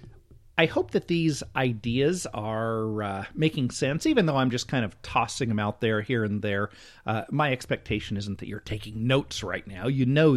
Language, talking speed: English, 195 wpm